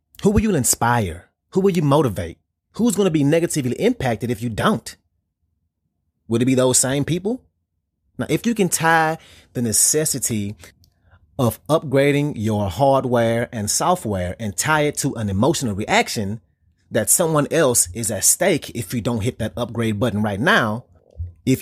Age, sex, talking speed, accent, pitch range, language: 30-49, male, 165 wpm, American, 100-140 Hz, English